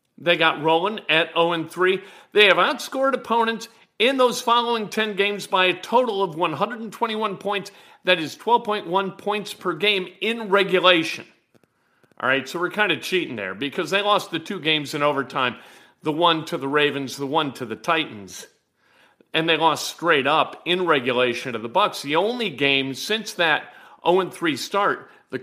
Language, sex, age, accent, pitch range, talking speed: English, male, 50-69, American, 160-210 Hz, 170 wpm